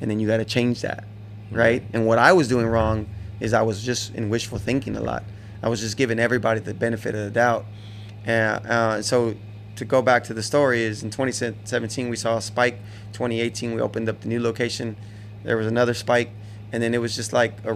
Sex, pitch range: male, 105-120 Hz